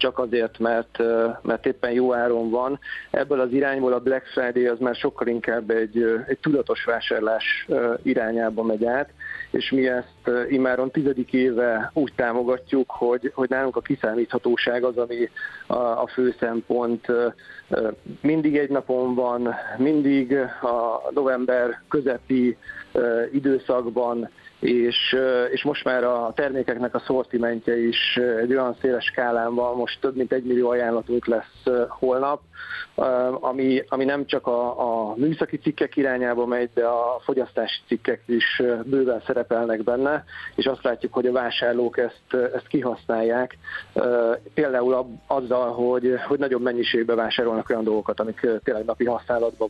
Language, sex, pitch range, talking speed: Hungarian, male, 120-130 Hz, 135 wpm